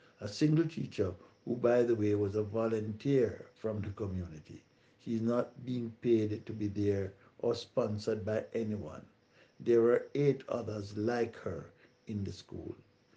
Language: English